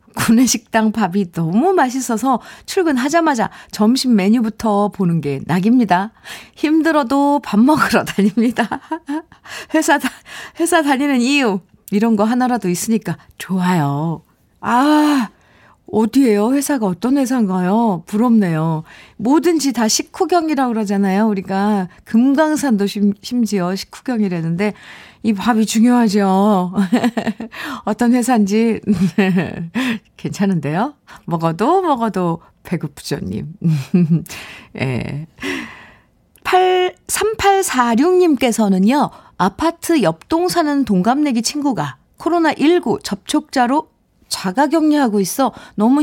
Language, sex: Korean, female